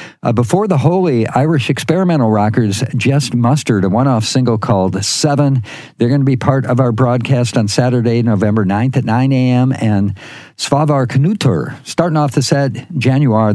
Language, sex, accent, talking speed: English, male, American, 165 wpm